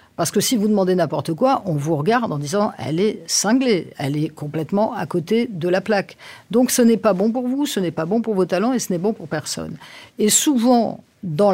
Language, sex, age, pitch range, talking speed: French, female, 50-69, 170-220 Hz, 250 wpm